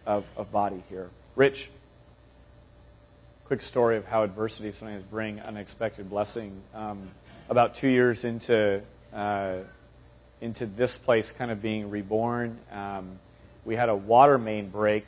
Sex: male